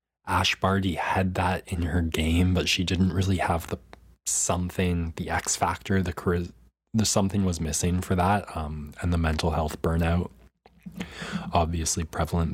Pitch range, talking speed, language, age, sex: 80-90 Hz, 155 wpm, English, 20-39, male